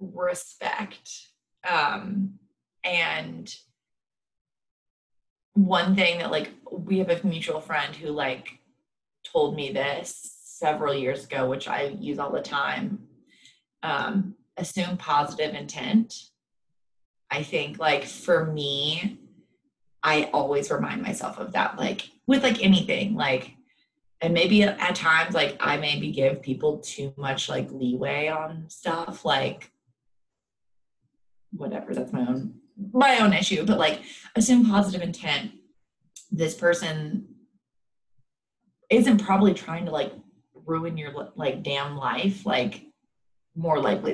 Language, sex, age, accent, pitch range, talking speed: English, female, 20-39, American, 145-205 Hz, 120 wpm